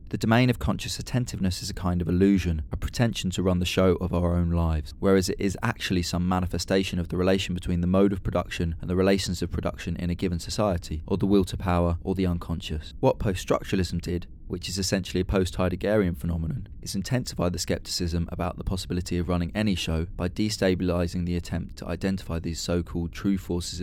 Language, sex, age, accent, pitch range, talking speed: English, male, 20-39, British, 85-100 Hz, 205 wpm